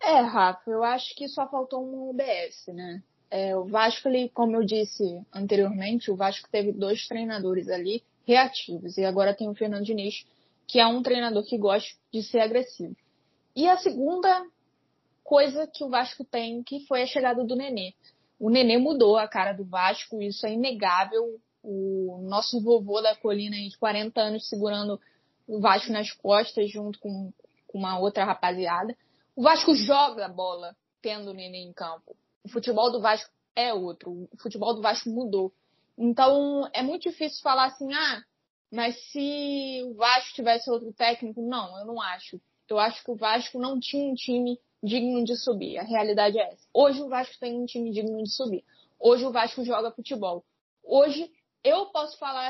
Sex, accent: female, Brazilian